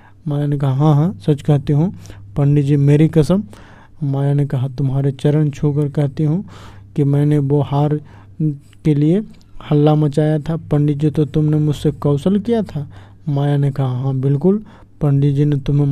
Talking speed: 175 wpm